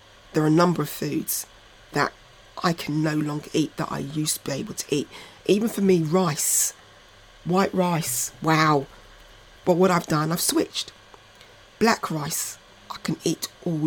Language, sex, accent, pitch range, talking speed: English, female, British, 145-185 Hz, 170 wpm